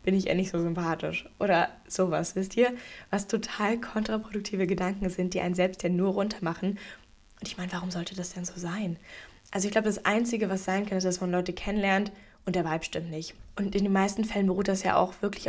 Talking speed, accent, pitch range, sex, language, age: 225 wpm, German, 175-205 Hz, female, German, 10-29